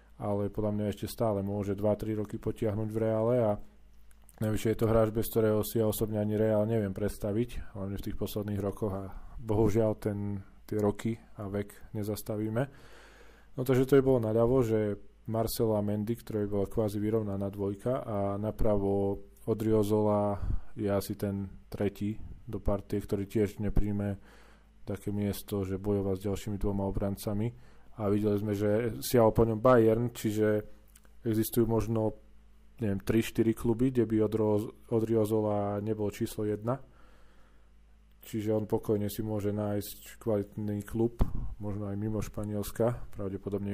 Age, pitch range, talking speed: 20-39, 100-110 Hz, 150 wpm